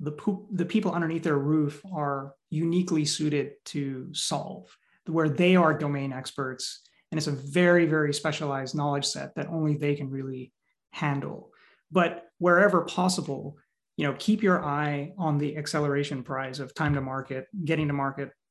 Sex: male